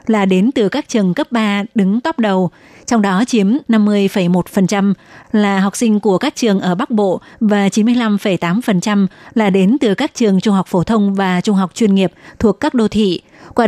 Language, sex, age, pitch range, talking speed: Vietnamese, female, 20-39, 190-225 Hz, 195 wpm